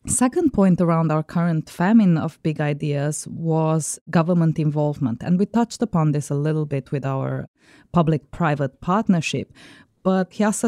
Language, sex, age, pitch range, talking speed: English, female, 20-39, 145-180 Hz, 150 wpm